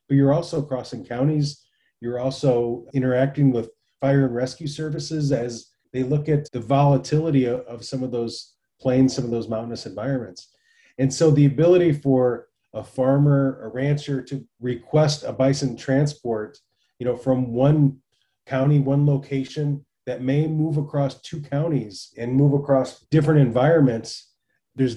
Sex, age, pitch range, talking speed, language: male, 30-49, 125-145 Hz, 150 wpm, English